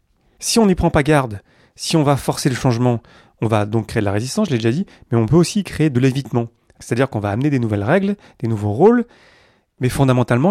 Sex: male